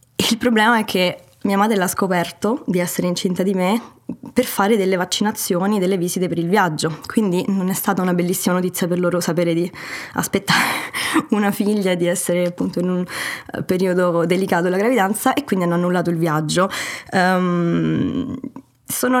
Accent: native